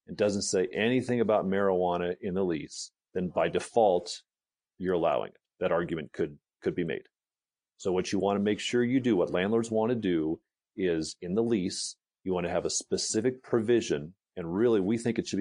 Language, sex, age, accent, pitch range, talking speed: English, male, 40-59, American, 90-110 Hz, 190 wpm